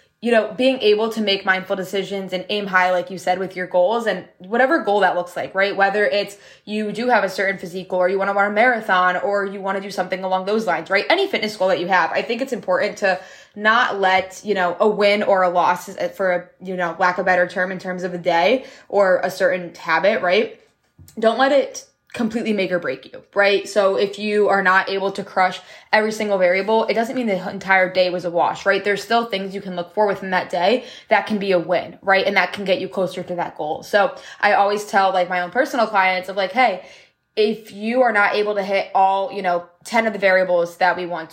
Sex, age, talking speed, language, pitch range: female, 20-39, 250 wpm, English, 185-215 Hz